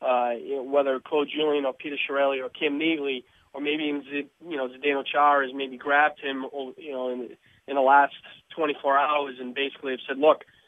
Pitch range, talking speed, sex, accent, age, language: 135-155 Hz, 195 wpm, male, American, 30-49, English